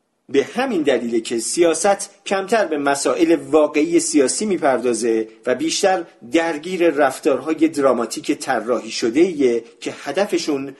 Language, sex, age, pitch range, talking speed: Persian, male, 50-69, 135-210 Hz, 110 wpm